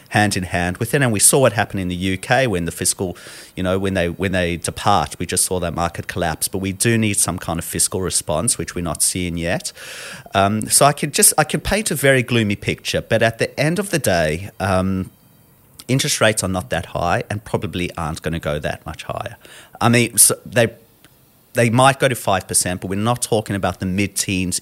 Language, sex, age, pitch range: English, male, 30-49, 90-120 Hz